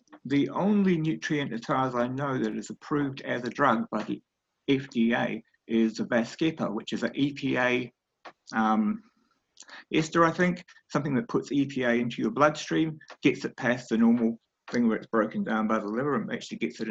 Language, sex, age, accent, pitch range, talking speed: English, male, 50-69, British, 115-160 Hz, 185 wpm